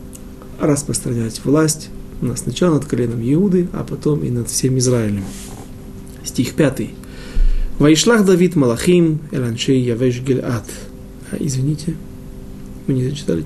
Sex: male